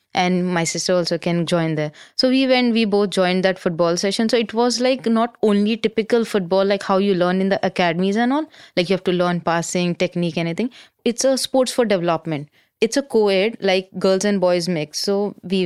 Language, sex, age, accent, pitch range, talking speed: English, female, 20-39, Indian, 180-235 Hz, 215 wpm